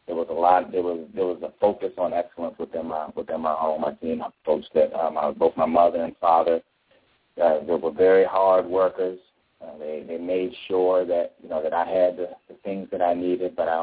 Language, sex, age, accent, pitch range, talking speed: English, male, 30-49, American, 80-90 Hz, 230 wpm